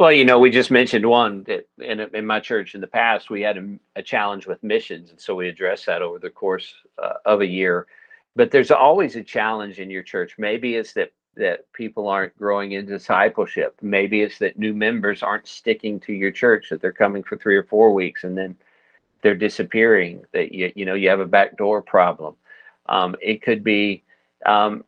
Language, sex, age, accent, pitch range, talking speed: English, male, 50-69, American, 95-120 Hz, 210 wpm